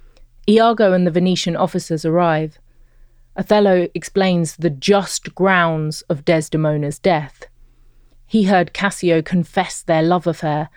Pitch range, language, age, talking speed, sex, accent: 150-195 Hz, English, 30-49, 115 wpm, female, British